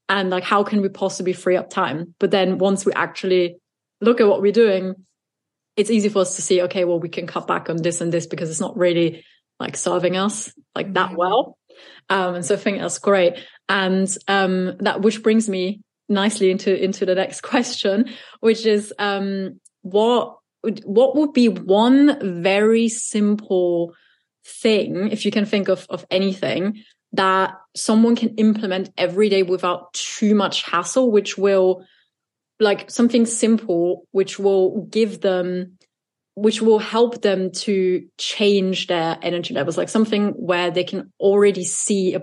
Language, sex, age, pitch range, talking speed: English, female, 20-39, 180-210 Hz, 170 wpm